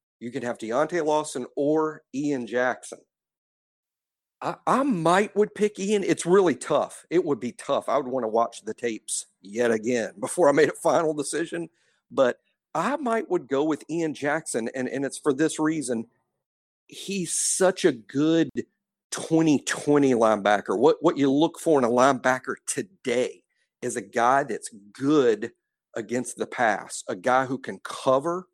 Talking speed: 165 wpm